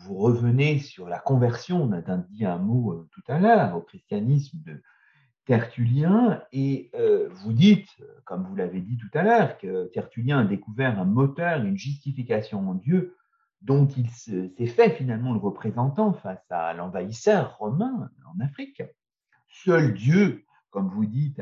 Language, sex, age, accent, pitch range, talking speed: French, male, 50-69, French, 120-190 Hz, 155 wpm